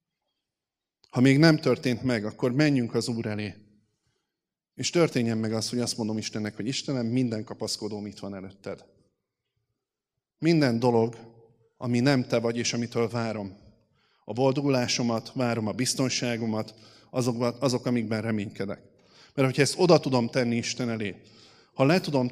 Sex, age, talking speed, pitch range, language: male, 30-49, 145 wpm, 115-140 Hz, Hungarian